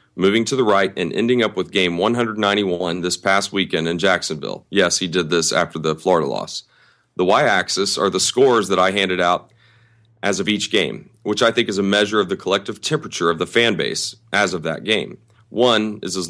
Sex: male